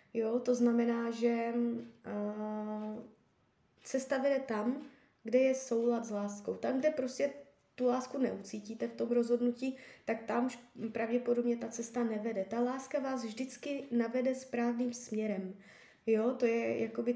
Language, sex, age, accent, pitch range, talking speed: Czech, female, 20-39, native, 230-260 Hz, 135 wpm